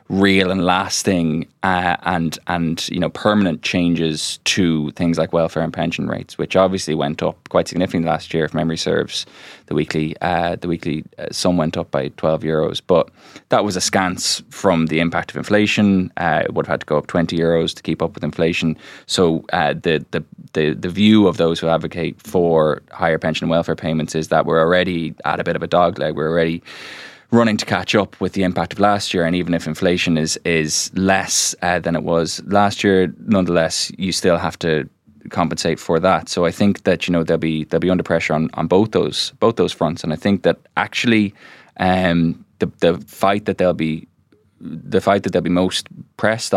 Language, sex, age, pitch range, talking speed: English, male, 20-39, 80-95 Hz, 210 wpm